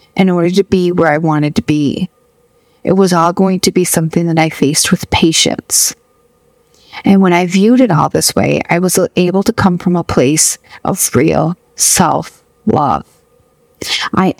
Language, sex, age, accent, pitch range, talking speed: English, female, 40-59, American, 175-210 Hz, 170 wpm